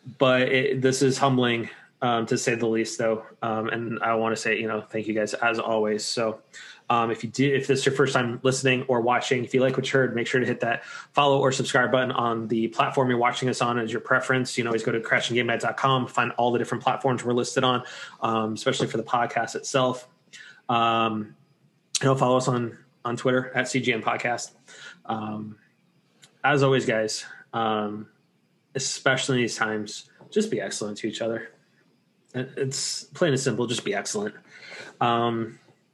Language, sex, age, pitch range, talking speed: English, male, 20-39, 115-130 Hz, 190 wpm